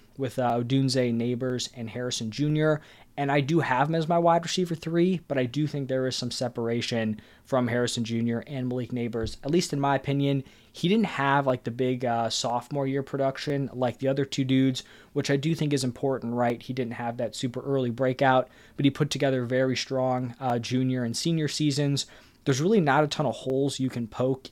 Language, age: English, 20-39